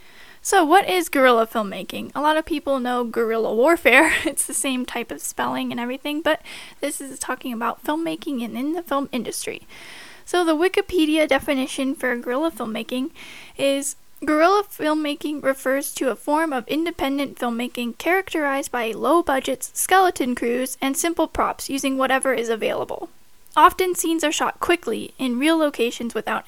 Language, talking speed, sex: English, 155 wpm, female